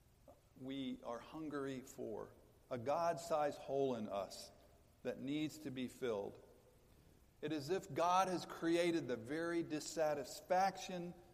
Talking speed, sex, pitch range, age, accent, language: 130 wpm, male, 125-155 Hz, 50-69, American, English